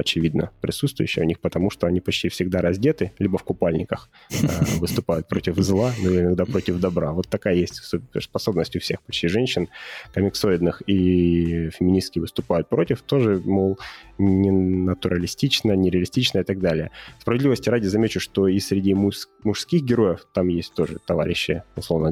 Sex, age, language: male, 20-39, Russian